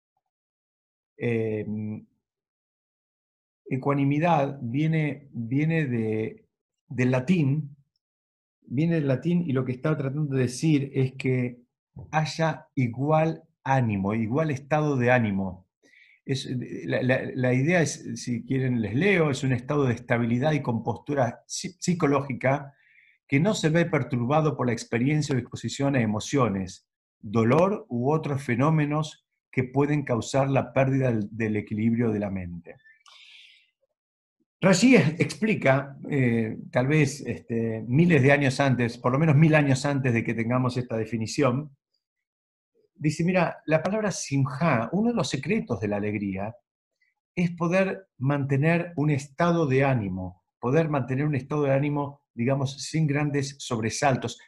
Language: Spanish